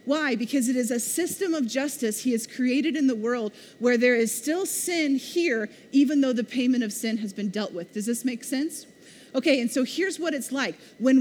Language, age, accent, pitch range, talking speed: English, 30-49, American, 245-300 Hz, 225 wpm